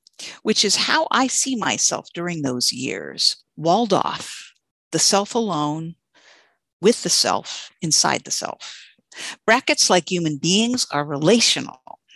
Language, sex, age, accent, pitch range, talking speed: English, female, 50-69, American, 160-225 Hz, 130 wpm